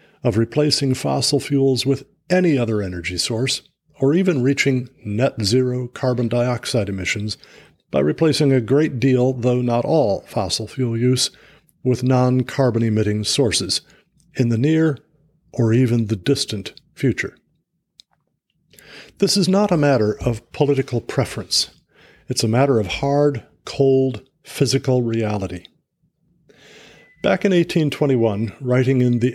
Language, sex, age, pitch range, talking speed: English, male, 50-69, 120-155 Hz, 125 wpm